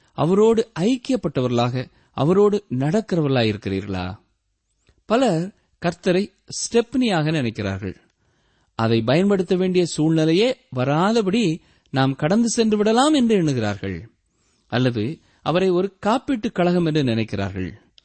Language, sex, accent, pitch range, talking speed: Tamil, male, native, 115-190 Hz, 90 wpm